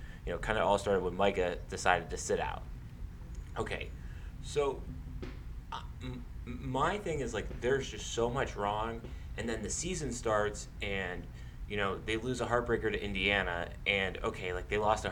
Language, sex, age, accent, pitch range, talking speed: English, male, 20-39, American, 85-110 Hz, 175 wpm